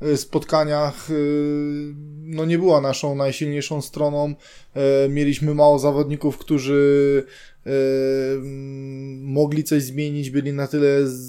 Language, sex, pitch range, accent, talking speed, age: Polish, male, 145-175 Hz, native, 85 wpm, 20-39